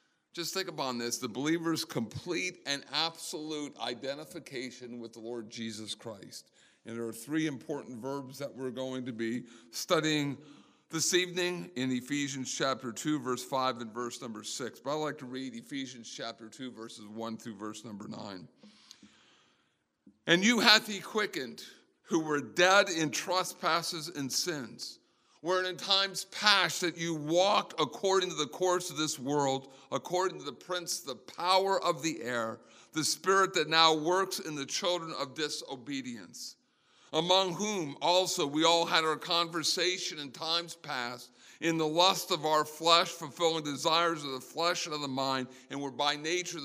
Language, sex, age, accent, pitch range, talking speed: English, male, 50-69, American, 130-175 Hz, 165 wpm